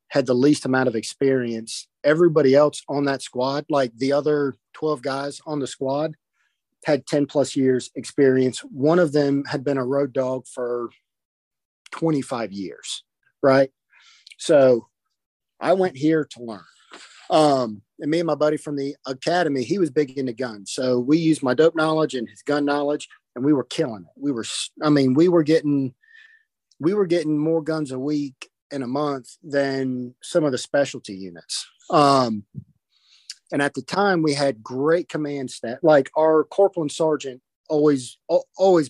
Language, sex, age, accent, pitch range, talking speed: English, male, 40-59, American, 130-155 Hz, 175 wpm